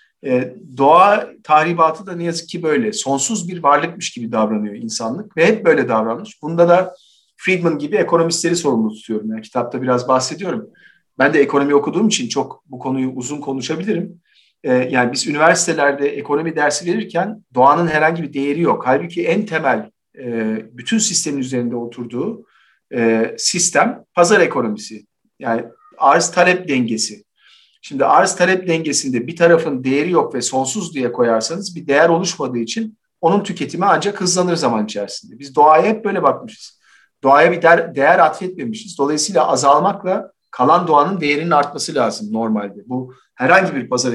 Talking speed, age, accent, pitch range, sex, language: 145 wpm, 50-69, native, 125-185 Hz, male, Turkish